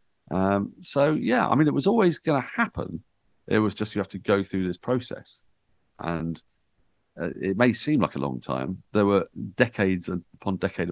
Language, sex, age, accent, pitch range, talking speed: English, male, 40-59, British, 80-100 Hz, 190 wpm